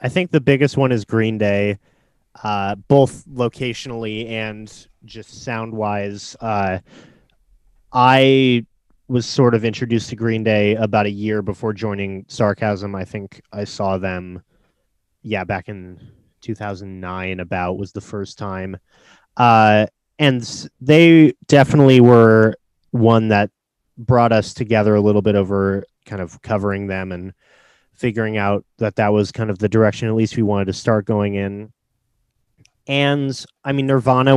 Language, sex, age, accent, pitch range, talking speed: English, male, 30-49, American, 100-125 Hz, 145 wpm